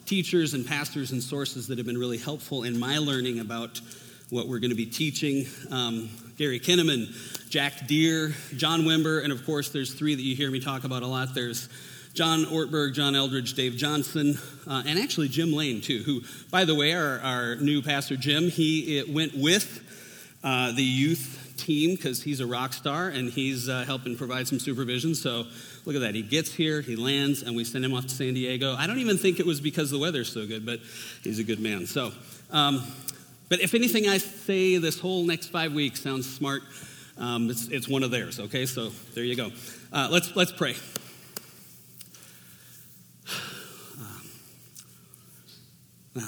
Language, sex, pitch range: English, male, 115-150 Hz